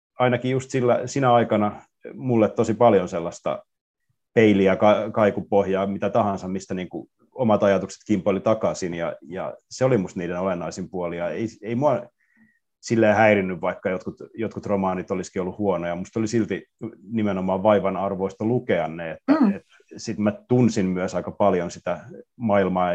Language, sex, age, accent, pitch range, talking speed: Finnish, male, 30-49, native, 95-110 Hz, 150 wpm